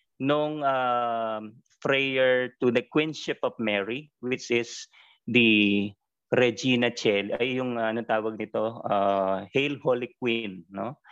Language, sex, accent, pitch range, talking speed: Filipino, male, native, 105-130 Hz, 130 wpm